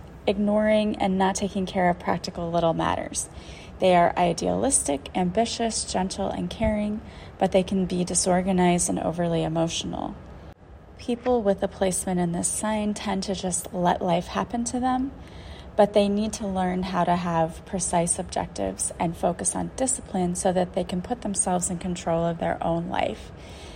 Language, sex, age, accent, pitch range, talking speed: English, female, 30-49, American, 175-205 Hz, 165 wpm